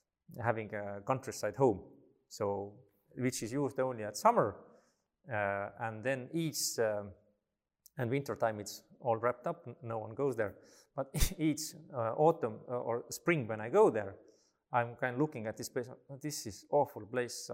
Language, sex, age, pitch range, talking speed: English, male, 30-49, 105-135 Hz, 170 wpm